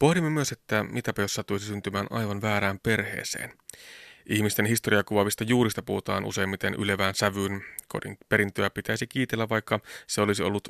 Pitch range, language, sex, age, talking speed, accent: 100-115 Hz, Finnish, male, 30-49, 135 wpm, native